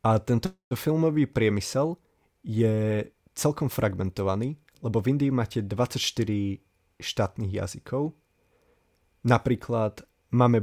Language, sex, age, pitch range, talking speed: Slovak, male, 20-39, 100-125 Hz, 90 wpm